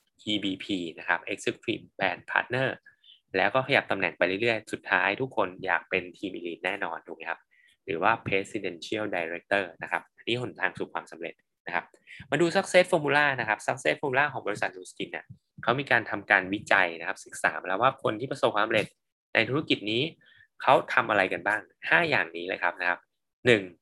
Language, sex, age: Thai, male, 20-39